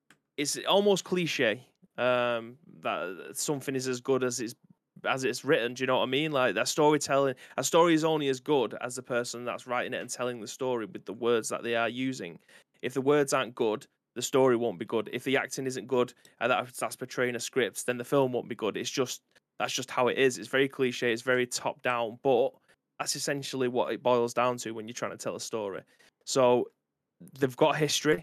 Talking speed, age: 225 wpm, 20-39